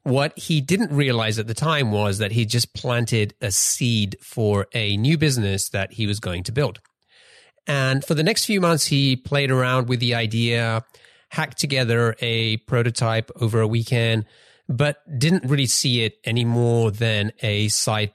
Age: 30-49